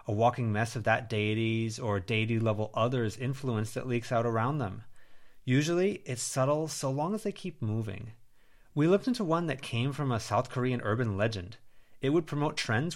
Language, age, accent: English, 30-49, American